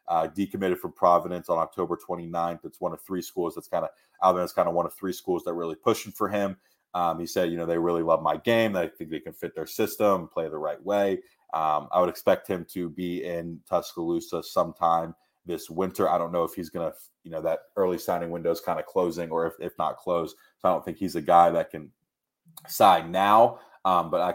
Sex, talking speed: male, 240 wpm